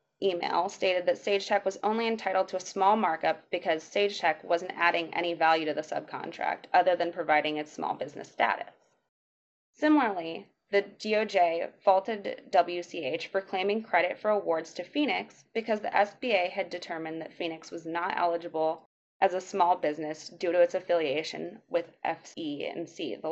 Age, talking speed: 20-39, 155 wpm